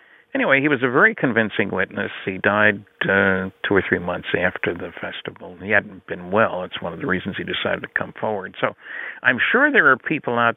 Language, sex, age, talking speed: English, male, 60-79, 215 wpm